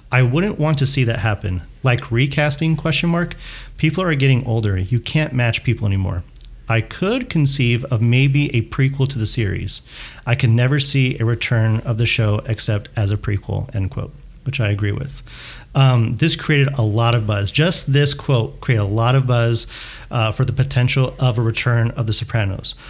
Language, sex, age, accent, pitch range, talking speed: English, male, 40-59, American, 115-135 Hz, 195 wpm